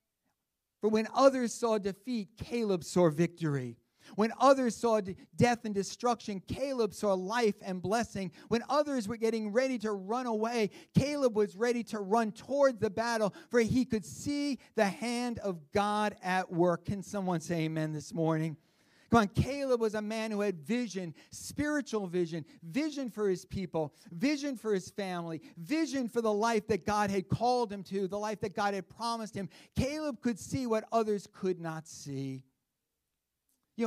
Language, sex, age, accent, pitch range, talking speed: English, male, 50-69, American, 170-215 Hz, 170 wpm